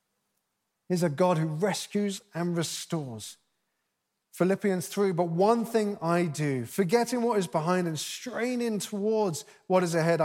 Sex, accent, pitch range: male, British, 165-220 Hz